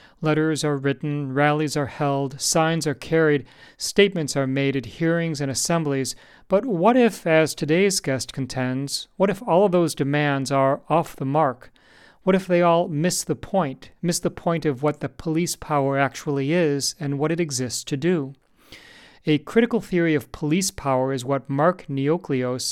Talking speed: 175 wpm